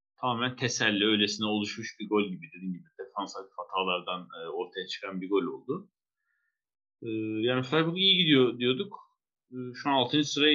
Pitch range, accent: 105-150 Hz, native